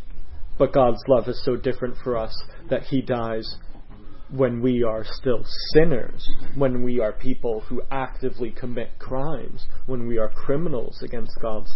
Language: English